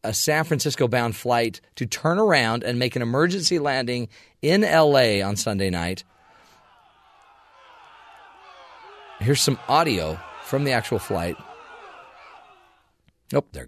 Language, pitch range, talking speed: English, 115-155 Hz, 115 wpm